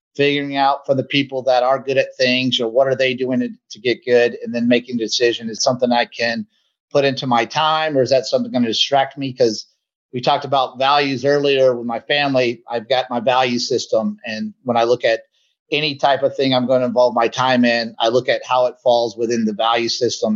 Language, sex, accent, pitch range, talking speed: English, male, American, 120-140 Hz, 230 wpm